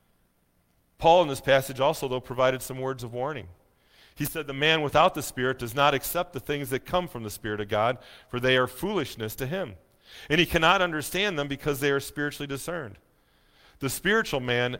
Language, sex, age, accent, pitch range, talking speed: English, male, 40-59, American, 100-150 Hz, 200 wpm